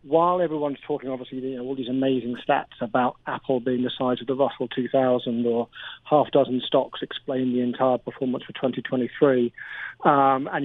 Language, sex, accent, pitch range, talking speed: English, male, British, 125-145 Hz, 175 wpm